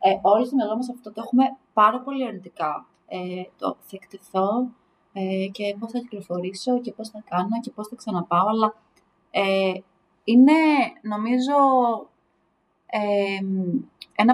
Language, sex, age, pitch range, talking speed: English, female, 20-39, 195-245 Hz, 140 wpm